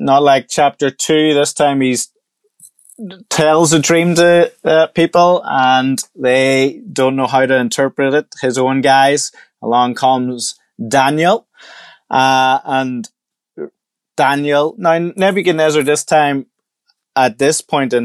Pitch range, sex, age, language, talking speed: 120-150 Hz, male, 20-39, English, 125 wpm